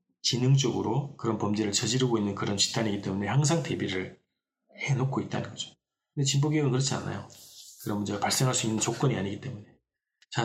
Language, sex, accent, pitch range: Korean, male, native, 110-140 Hz